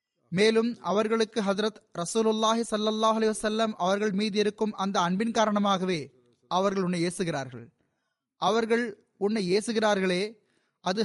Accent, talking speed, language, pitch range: native, 90 wpm, Tamil, 170-215 Hz